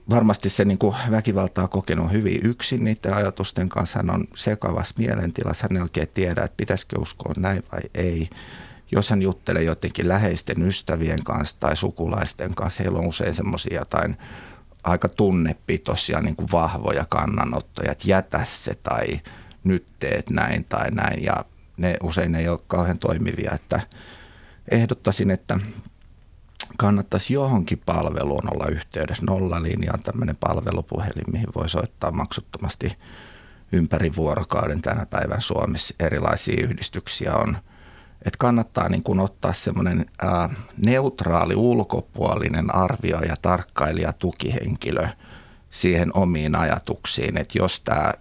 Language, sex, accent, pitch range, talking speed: Finnish, male, native, 85-105 Hz, 125 wpm